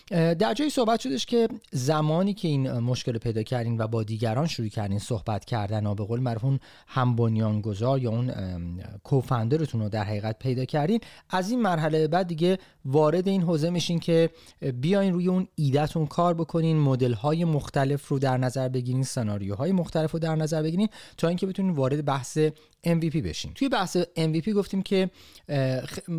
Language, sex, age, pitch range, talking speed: Persian, male, 30-49, 120-160 Hz, 170 wpm